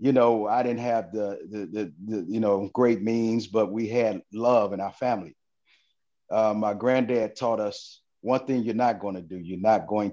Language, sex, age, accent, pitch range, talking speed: English, male, 40-59, American, 100-120 Hz, 205 wpm